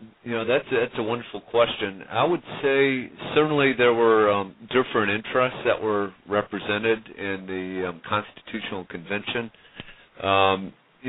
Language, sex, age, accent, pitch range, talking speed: English, male, 40-59, American, 90-110 Hz, 145 wpm